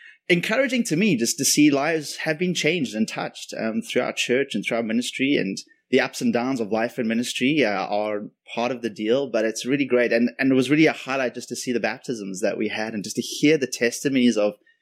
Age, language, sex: 20-39, English, male